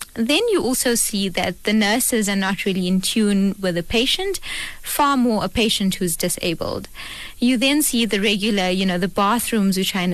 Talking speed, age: 195 wpm, 20-39